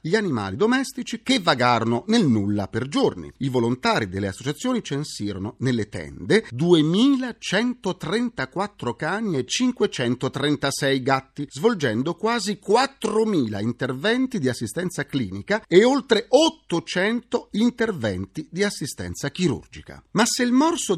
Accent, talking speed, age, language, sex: native, 110 wpm, 40-59, Italian, male